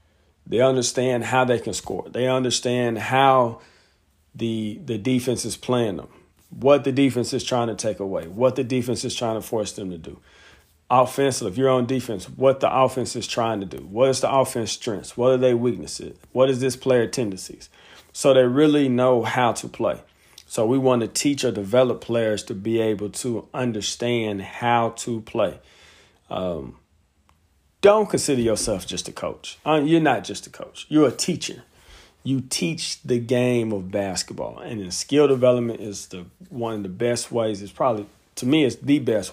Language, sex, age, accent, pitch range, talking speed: English, male, 40-59, American, 100-130 Hz, 185 wpm